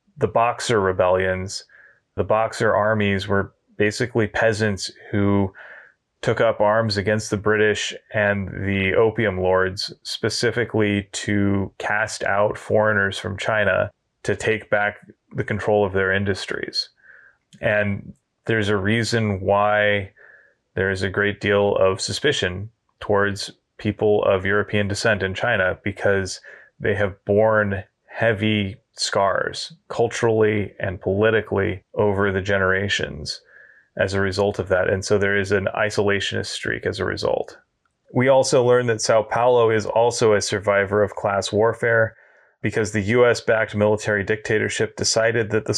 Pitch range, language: 100-115 Hz, English